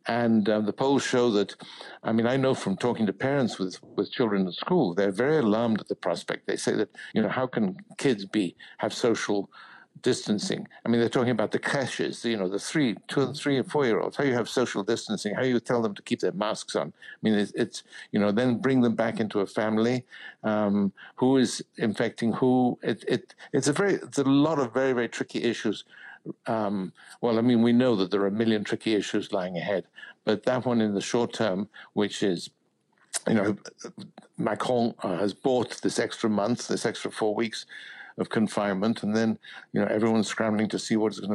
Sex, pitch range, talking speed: male, 105-125 Hz, 220 wpm